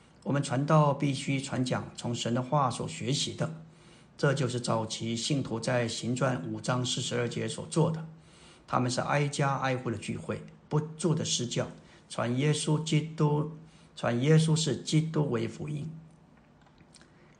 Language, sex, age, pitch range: Chinese, male, 50-69, 120-155 Hz